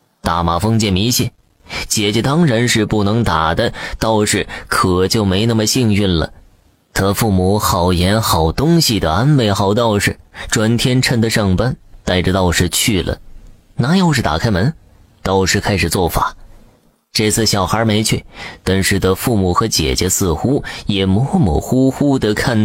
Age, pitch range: 20-39, 95-115 Hz